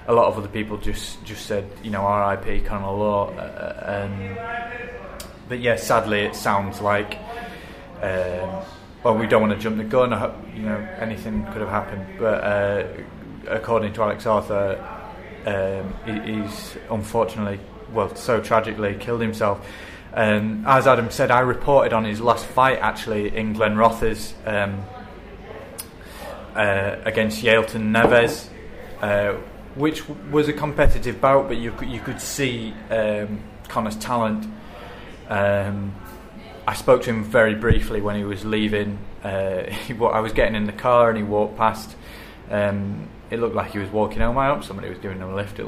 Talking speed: 160 wpm